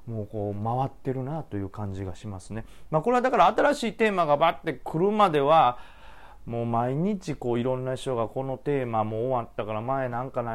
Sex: male